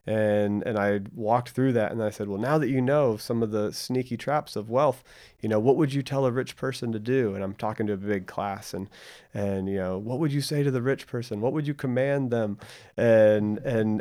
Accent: American